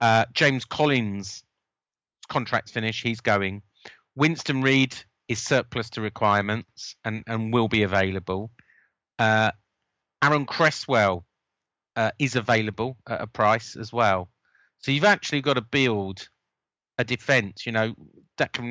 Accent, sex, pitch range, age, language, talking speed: British, male, 105-125 Hz, 40-59, English, 130 wpm